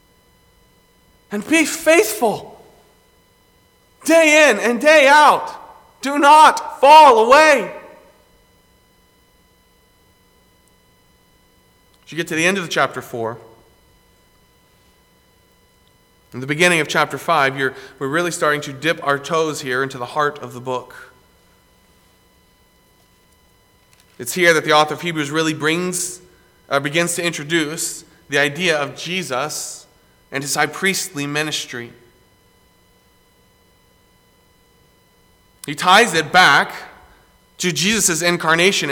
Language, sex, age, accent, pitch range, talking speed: English, male, 40-59, American, 135-175 Hz, 105 wpm